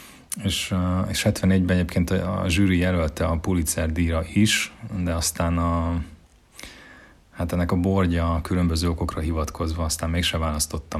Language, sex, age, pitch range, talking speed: Hungarian, male, 30-49, 80-90 Hz, 130 wpm